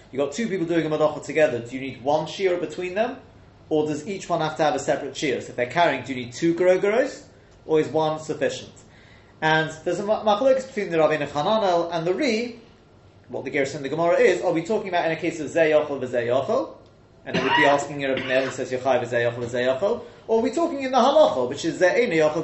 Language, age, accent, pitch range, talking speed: English, 30-49, British, 130-180 Hz, 240 wpm